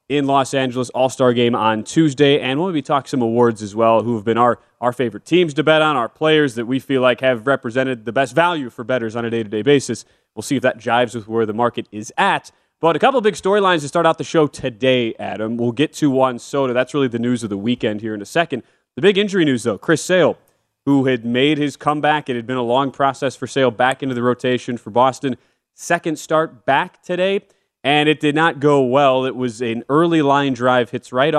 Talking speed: 245 wpm